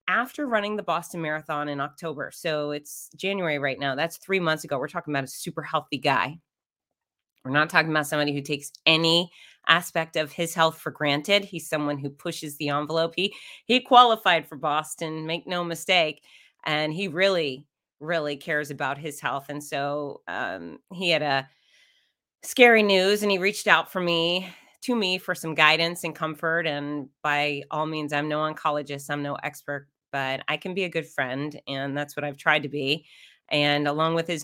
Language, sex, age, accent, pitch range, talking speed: English, female, 30-49, American, 145-165 Hz, 190 wpm